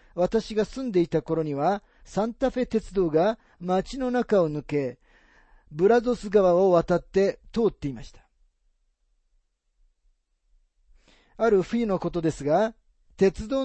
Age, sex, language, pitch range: 40-59, male, Japanese, 140-215 Hz